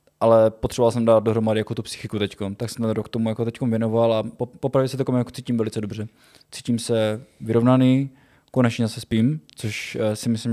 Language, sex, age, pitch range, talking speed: Czech, male, 20-39, 105-120 Hz, 220 wpm